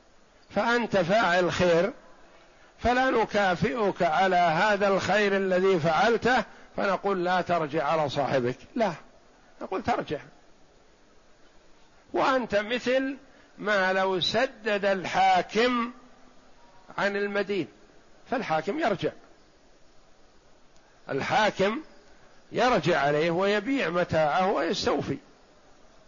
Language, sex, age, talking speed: Arabic, male, 60-79, 80 wpm